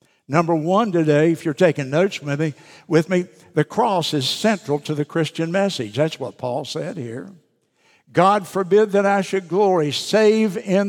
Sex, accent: male, American